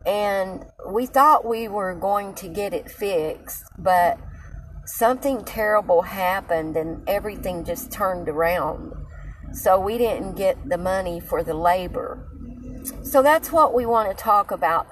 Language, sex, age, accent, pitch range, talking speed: English, female, 40-59, American, 165-210 Hz, 145 wpm